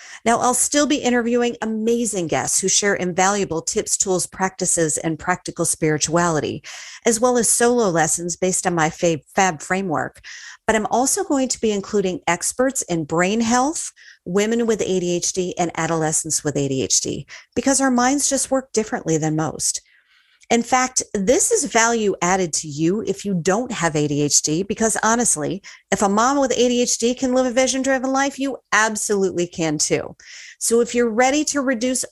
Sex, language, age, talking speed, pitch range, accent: female, English, 40-59, 165 wpm, 175-250 Hz, American